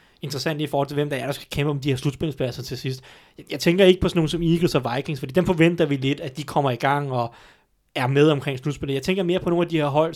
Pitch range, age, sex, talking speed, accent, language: 140-165 Hz, 30-49, male, 295 wpm, native, Danish